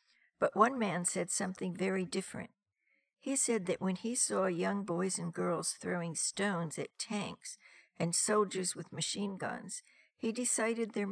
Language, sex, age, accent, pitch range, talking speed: English, female, 60-79, American, 175-225 Hz, 155 wpm